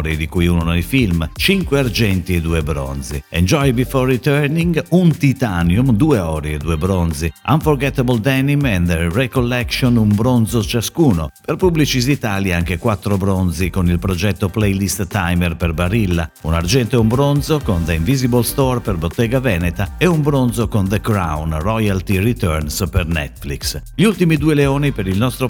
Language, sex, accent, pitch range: Italian, male, native, 85-130 Hz